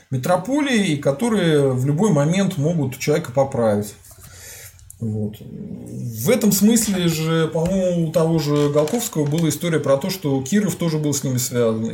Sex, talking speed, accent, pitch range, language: male, 140 wpm, native, 130-190 Hz, Russian